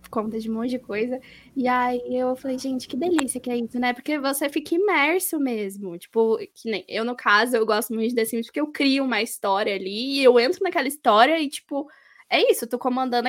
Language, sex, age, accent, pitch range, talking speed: Portuguese, female, 10-29, Brazilian, 230-320 Hz, 235 wpm